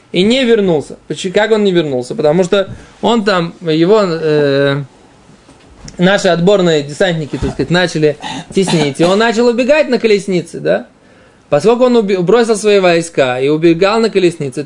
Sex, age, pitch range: male, 20-39, 165-210 Hz